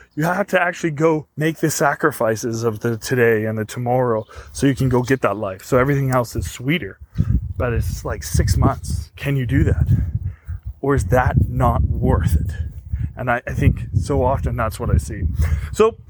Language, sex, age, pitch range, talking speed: English, male, 20-39, 105-145 Hz, 195 wpm